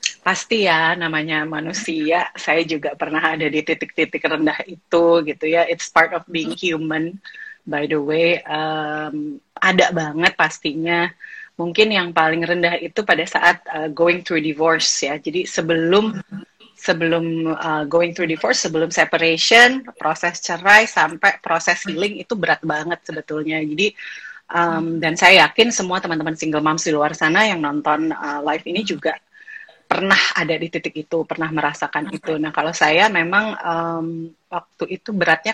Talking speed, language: 150 wpm, English